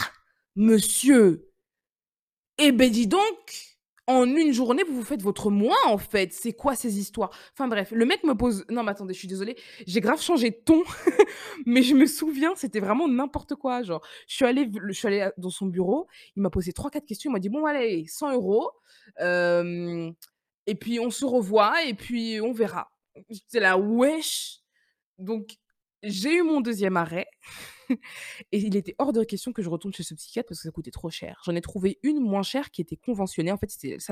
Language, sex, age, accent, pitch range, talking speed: French, female, 20-39, French, 175-250 Hz, 210 wpm